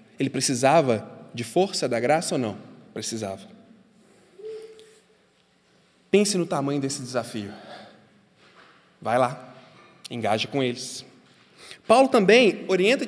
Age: 20-39